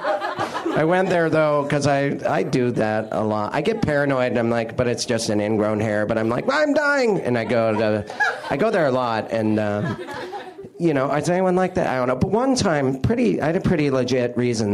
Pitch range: 115-170 Hz